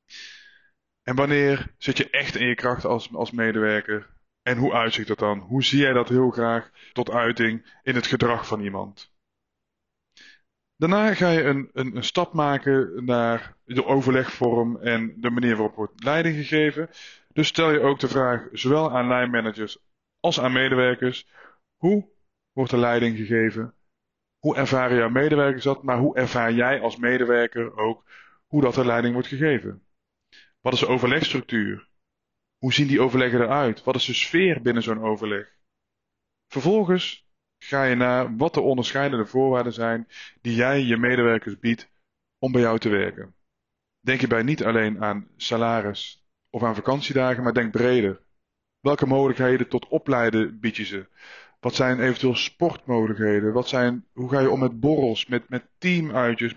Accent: Dutch